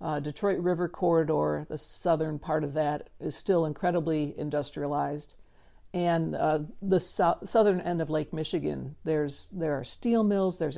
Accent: American